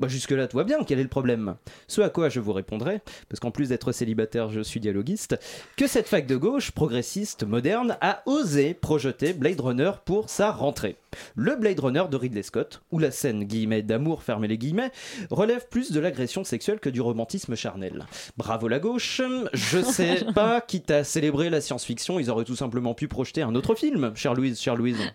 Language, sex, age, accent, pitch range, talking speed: French, male, 30-49, French, 115-175 Hz, 205 wpm